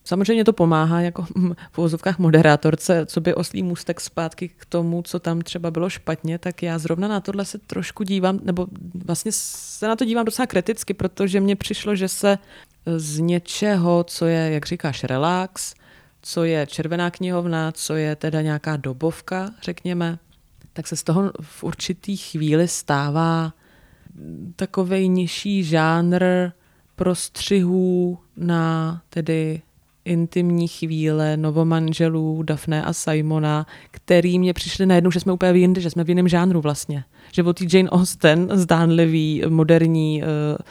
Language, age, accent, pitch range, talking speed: Czech, 20-39, native, 160-180 Hz, 145 wpm